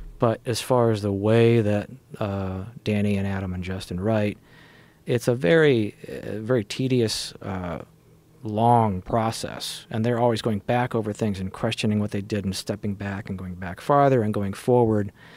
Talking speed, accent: 170 wpm, American